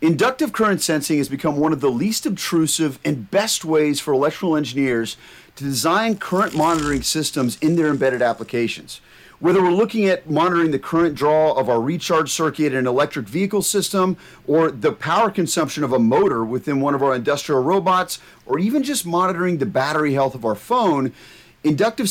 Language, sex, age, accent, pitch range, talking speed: English, male, 40-59, American, 135-175 Hz, 180 wpm